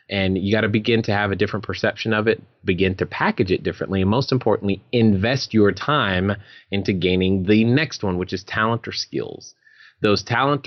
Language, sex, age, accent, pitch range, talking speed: English, male, 30-49, American, 90-110 Hz, 195 wpm